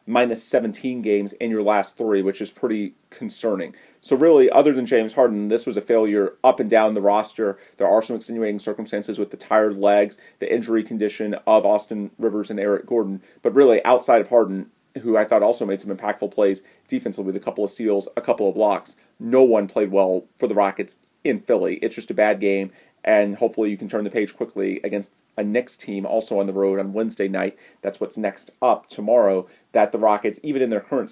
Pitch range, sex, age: 100-120 Hz, male, 30-49